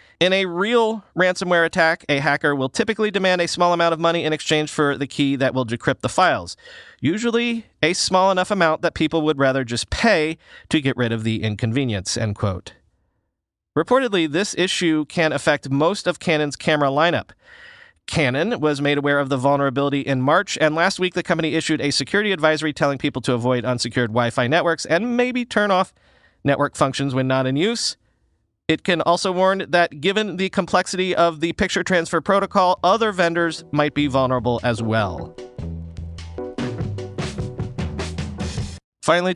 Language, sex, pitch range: English, male, 125-180 Hz